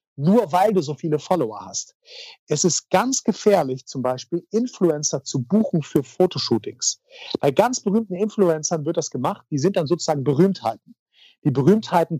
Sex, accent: male, German